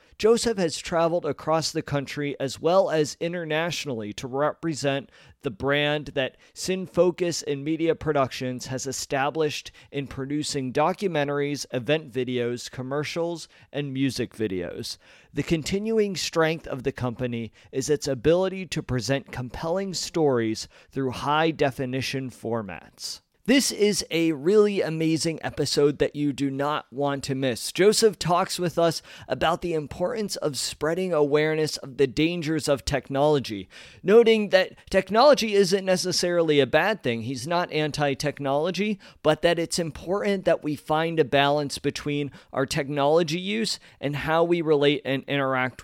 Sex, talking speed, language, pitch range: male, 135 wpm, English, 135-170 Hz